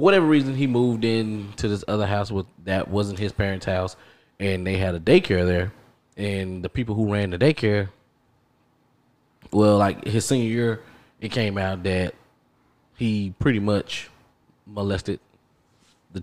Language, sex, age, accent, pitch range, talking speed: English, male, 20-39, American, 95-115 Hz, 155 wpm